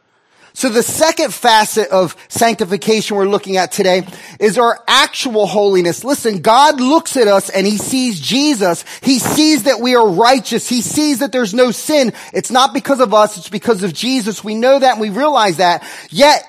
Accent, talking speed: American, 190 wpm